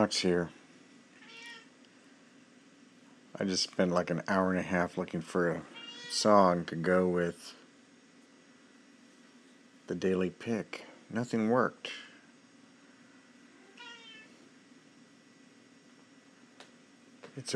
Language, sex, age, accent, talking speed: English, male, 60-79, American, 75 wpm